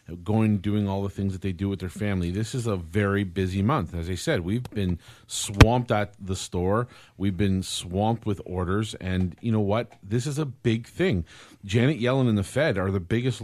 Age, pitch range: 40-59, 95-115 Hz